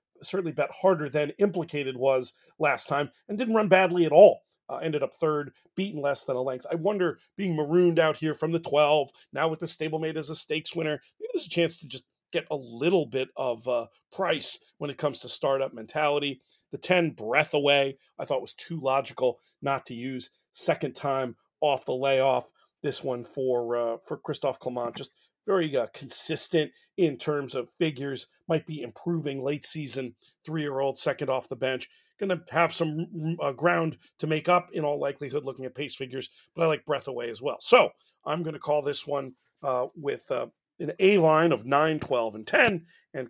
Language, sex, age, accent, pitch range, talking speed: English, male, 40-59, American, 135-165 Hz, 200 wpm